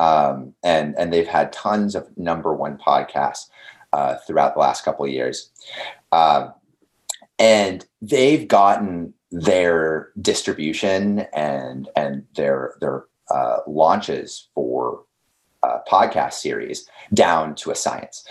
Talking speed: 120 wpm